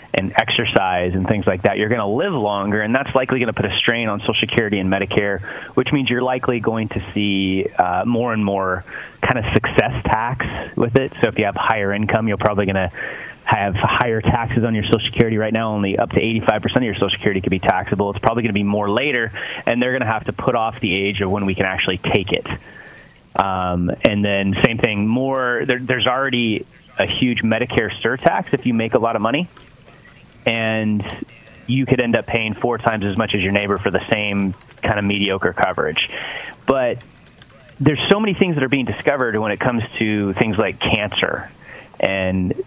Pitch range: 100-125 Hz